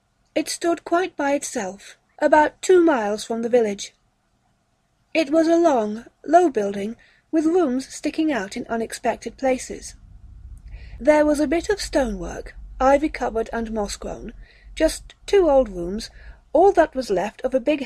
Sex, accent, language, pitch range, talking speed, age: female, British, English, 220-300 Hz, 150 wpm, 40-59